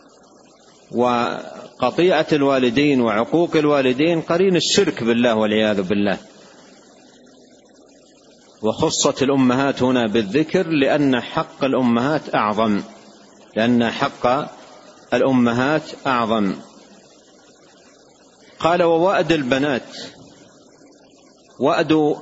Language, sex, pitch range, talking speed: Arabic, male, 125-155 Hz, 70 wpm